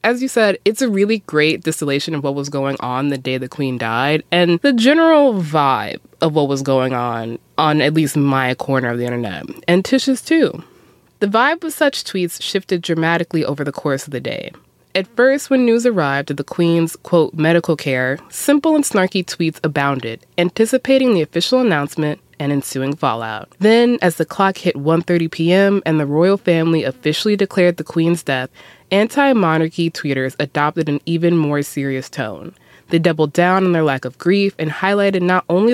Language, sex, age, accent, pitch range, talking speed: English, female, 20-39, American, 150-195 Hz, 185 wpm